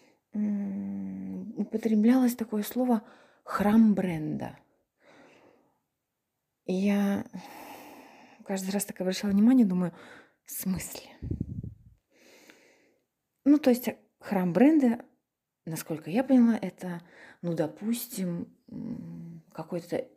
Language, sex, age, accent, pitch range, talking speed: Ukrainian, female, 20-39, native, 180-235 Hz, 75 wpm